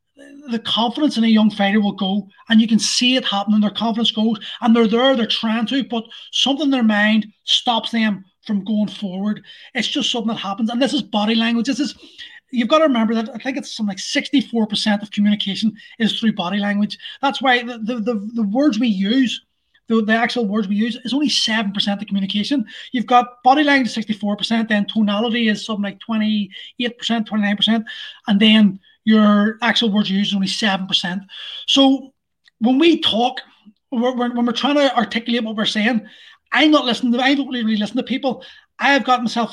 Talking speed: 195 wpm